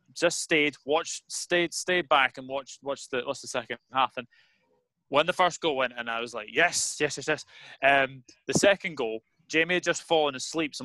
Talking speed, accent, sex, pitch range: 210 wpm, British, male, 130-160 Hz